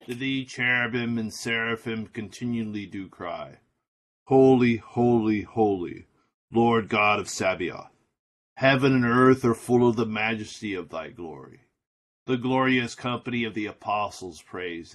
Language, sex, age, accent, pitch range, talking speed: English, male, 40-59, American, 105-120 Hz, 135 wpm